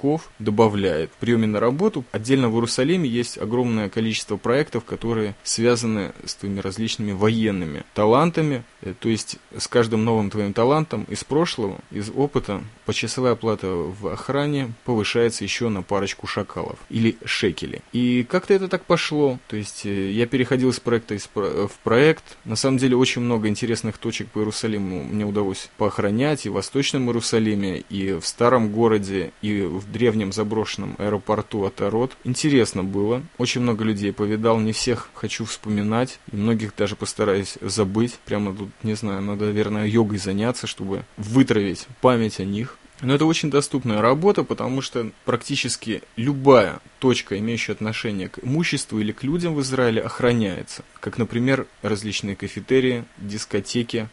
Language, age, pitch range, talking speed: Russian, 20-39, 105-125 Hz, 145 wpm